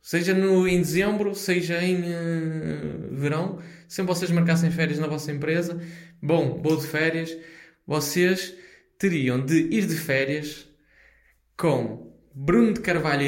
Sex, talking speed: male, 130 wpm